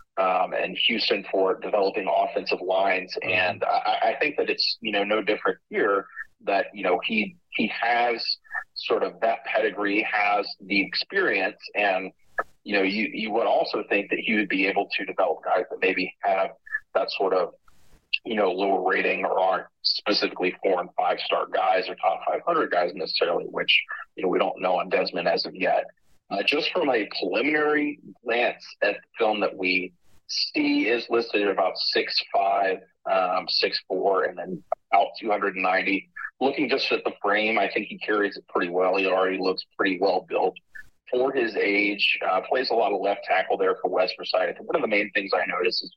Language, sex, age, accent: English, male, 30-49, American